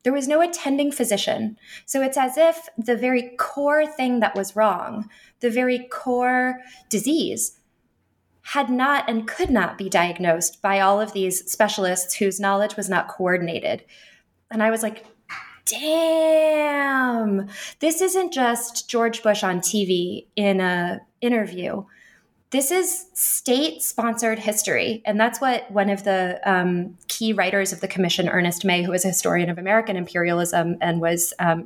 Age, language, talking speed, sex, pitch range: 20-39, English, 150 wpm, female, 175-235 Hz